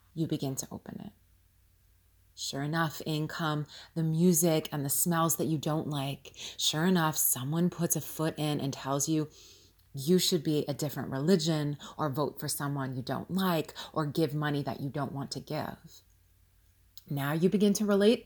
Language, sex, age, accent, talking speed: English, female, 30-49, American, 180 wpm